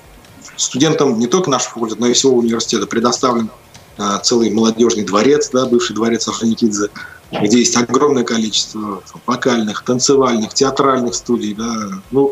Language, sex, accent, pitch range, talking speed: Russian, male, native, 110-130 Hz, 135 wpm